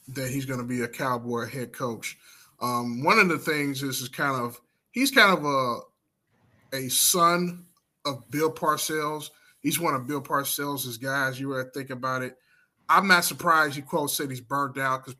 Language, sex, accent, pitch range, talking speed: English, male, American, 125-145 Hz, 190 wpm